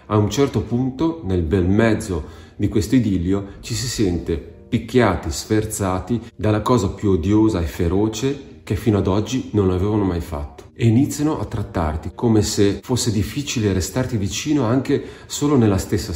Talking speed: 160 wpm